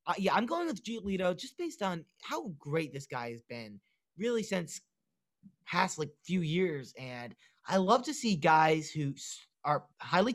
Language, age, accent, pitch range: English, 30-49, American, 150-195 Hz